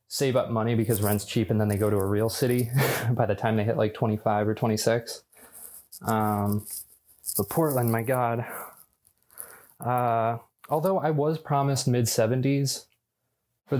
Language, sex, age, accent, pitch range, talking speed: English, male, 20-39, American, 110-125 Hz, 150 wpm